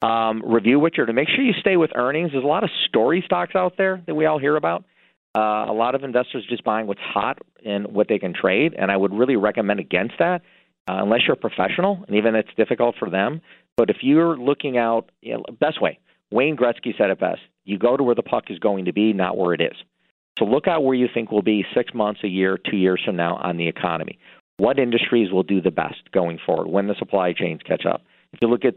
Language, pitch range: English, 100-145 Hz